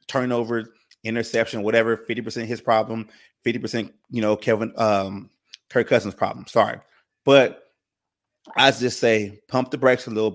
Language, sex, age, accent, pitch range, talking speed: English, male, 30-49, American, 105-120 Hz, 140 wpm